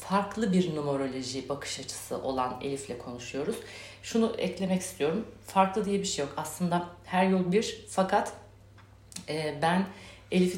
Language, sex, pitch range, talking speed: Turkish, female, 140-180 Hz, 130 wpm